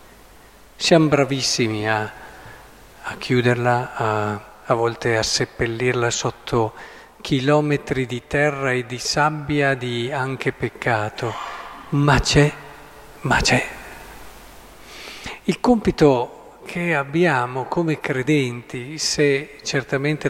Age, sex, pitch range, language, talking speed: 50-69, male, 125-160 Hz, Italian, 95 wpm